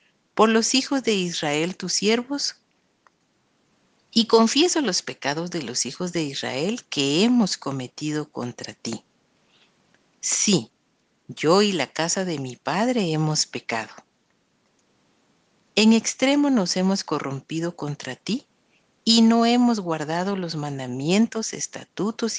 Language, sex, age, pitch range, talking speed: Spanish, female, 50-69, 150-220 Hz, 120 wpm